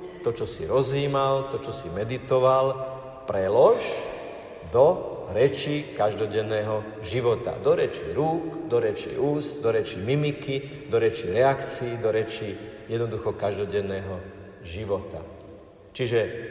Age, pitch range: 50-69, 105-155 Hz